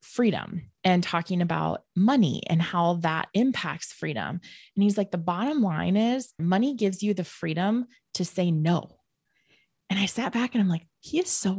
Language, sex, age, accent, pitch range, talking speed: English, female, 20-39, American, 185-250 Hz, 180 wpm